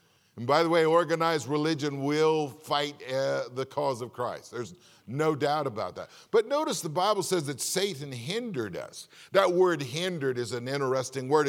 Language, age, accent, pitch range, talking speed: English, 50-69, American, 140-180 Hz, 180 wpm